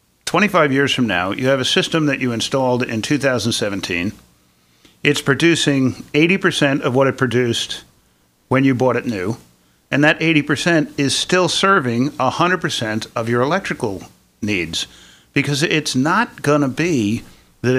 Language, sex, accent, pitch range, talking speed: English, male, American, 110-145 Hz, 145 wpm